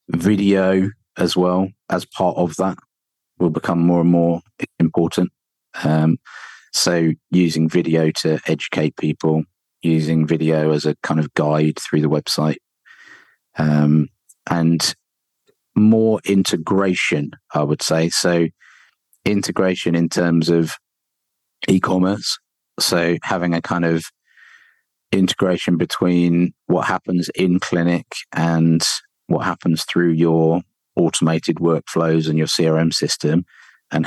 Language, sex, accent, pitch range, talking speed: English, male, British, 80-90 Hz, 115 wpm